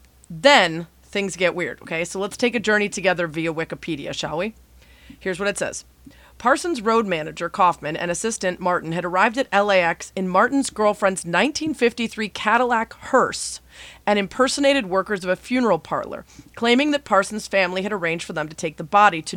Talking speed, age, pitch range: 175 wpm, 30-49, 170-225 Hz